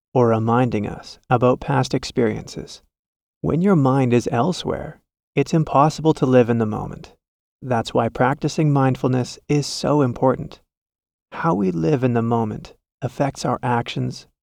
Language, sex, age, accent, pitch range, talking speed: English, male, 30-49, American, 120-145 Hz, 140 wpm